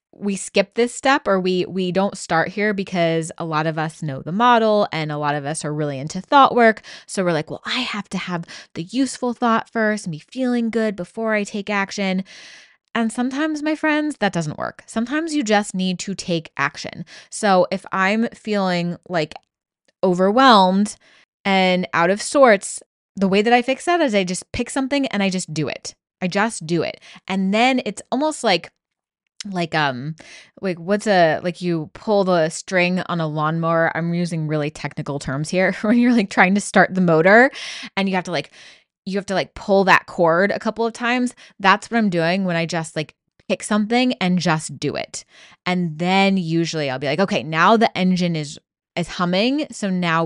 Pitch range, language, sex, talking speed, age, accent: 165-220 Hz, English, female, 200 wpm, 20-39, American